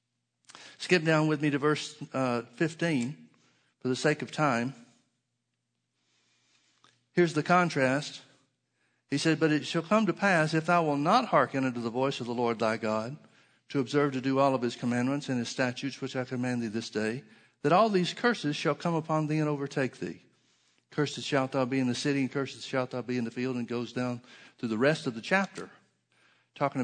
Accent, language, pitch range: American, English, 125-150 Hz